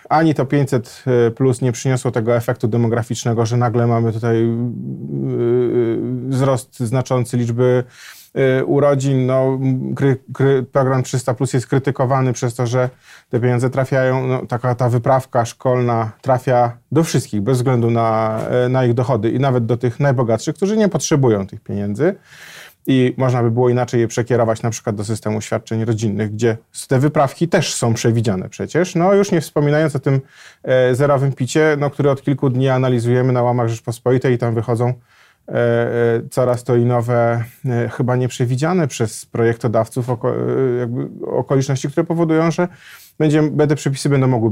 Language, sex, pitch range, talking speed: Polish, male, 120-135 Hz, 160 wpm